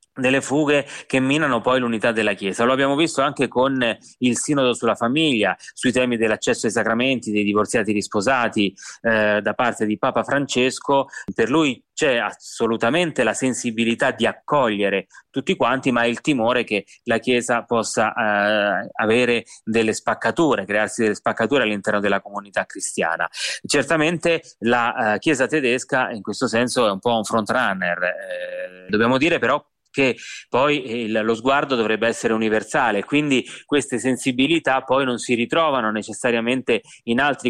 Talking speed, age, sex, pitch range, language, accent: 145 wpm, 30-49, male, 110-130 Hz, Italian, native